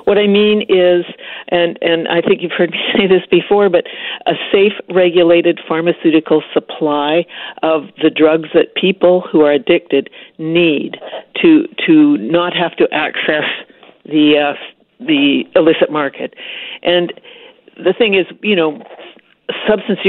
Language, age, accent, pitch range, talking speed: English, 60-79, American, 155-185 Hz, 140 wpm